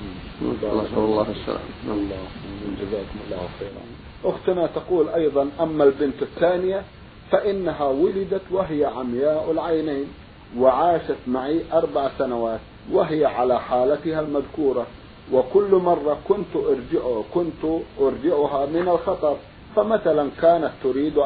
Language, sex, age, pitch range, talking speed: Arabic, male, 50-69, 130-165 Hz, 90 wpm